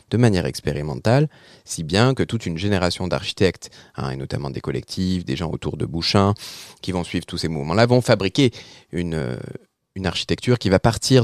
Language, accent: French, French